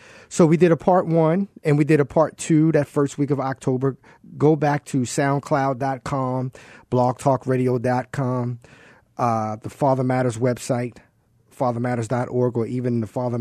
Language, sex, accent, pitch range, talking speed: English, male, American, 120-140 Hz, 140 wpm